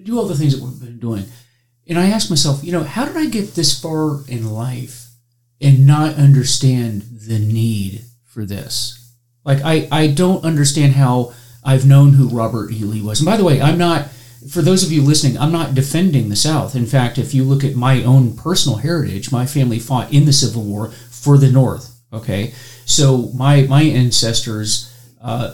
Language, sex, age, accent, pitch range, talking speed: English, male, 40-59, American, 120-145 Hz, 195 wpm